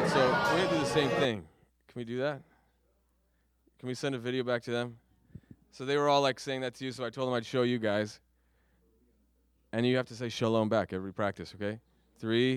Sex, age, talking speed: male, 20-39, 230 wpm